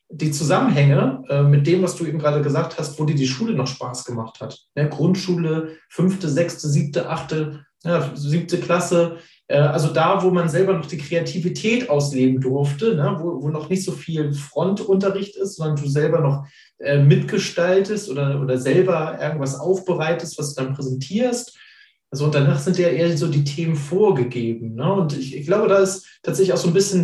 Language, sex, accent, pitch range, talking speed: German, male, German, 140-185 Hz, 170 wpm